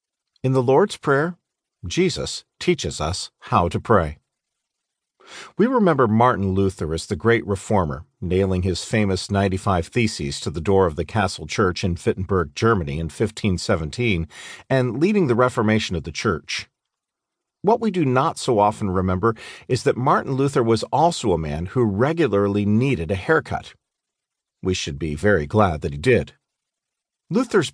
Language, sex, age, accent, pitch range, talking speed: English, male, 50-69, American, 95-135 Hz, 155 wpm